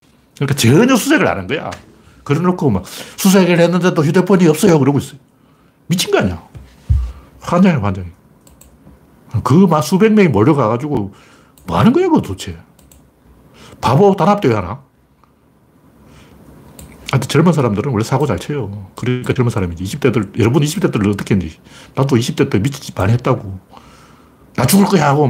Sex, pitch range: male, 105-160 Hz